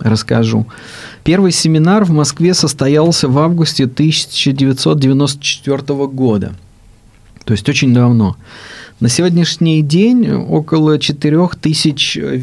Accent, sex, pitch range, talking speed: native, male, 115-150 Hz, 85 wpm